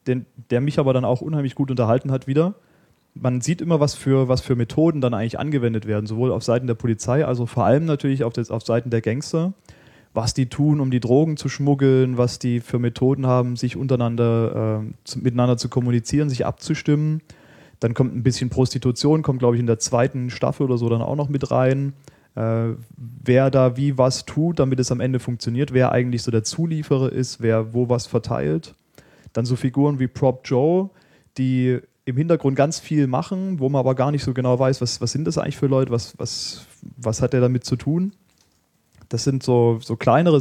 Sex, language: male, German